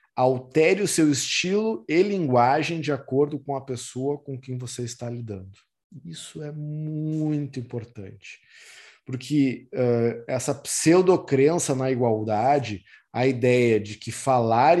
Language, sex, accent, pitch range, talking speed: Portuguese, male, Brazilian, 115-135 Hz, 130 wpm